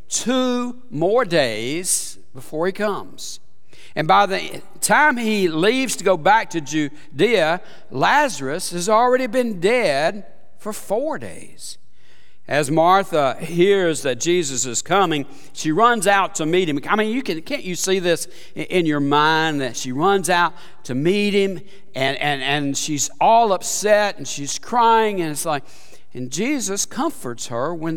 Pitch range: 150-215 Hz